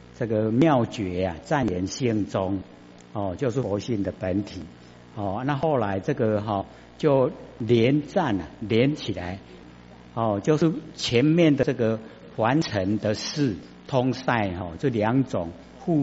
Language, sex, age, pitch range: Chinese, male, 60-79, 80-130 Hz